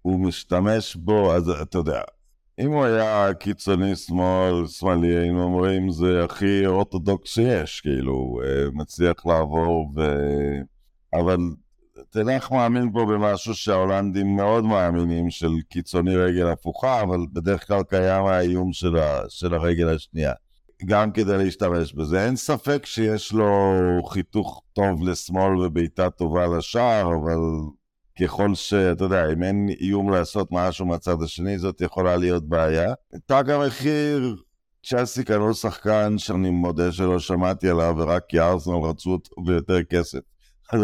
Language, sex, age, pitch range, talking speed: Hebrew, male, 50-69, 85-110 Hz, 130 wpm